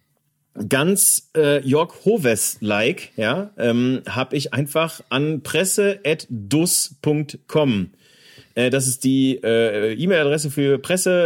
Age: 40-59